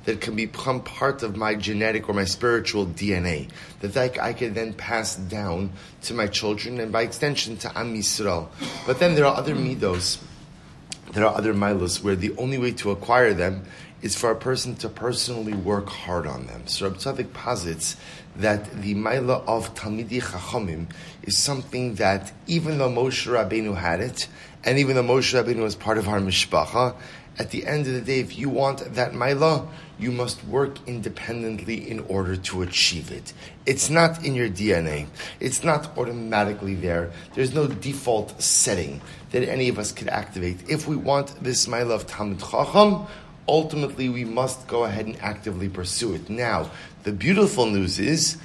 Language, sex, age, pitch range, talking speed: English, male, 30-49, 100-130 Hz, 175 wpm